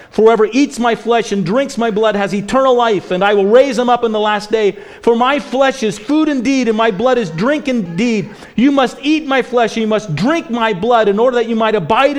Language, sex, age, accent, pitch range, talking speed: English, male, 40-59, American, 150-245 Hz, 245 wpm